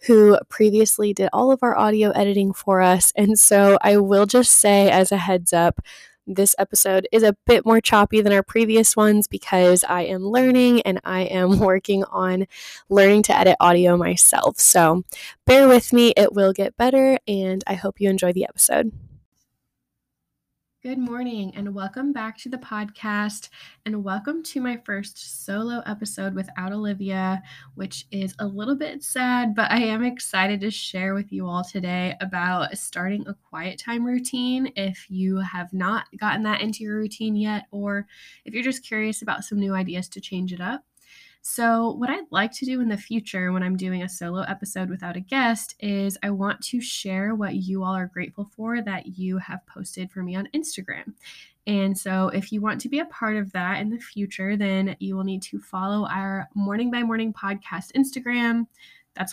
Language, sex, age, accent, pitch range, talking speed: English, female, 10-29, American, 185-225 Hz, 190 wpm